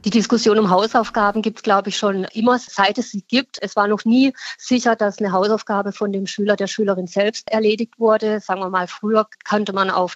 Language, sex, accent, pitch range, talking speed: German, female, German, 200-220 Hz, 220 wpm